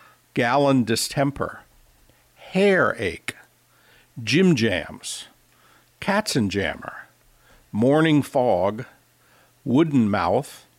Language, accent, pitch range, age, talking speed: English, American, 100-135 Hz, 60-79, 70 wpm